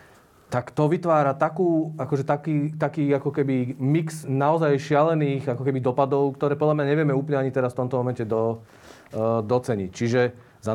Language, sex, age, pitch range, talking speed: Slovak, male, 40-59, 115-135 Hz, 165 wpm